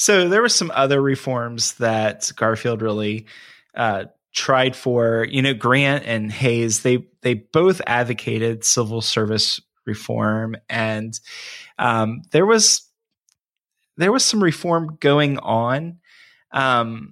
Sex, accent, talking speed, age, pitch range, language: male, American, 125 wpm, 20-39, 115-150 Hz, English